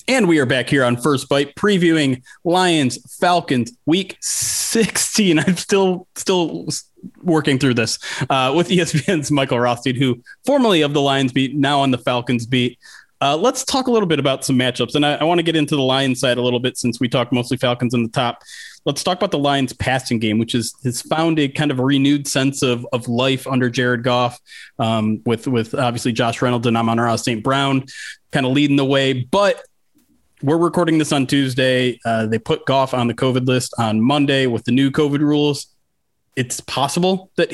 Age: 30-49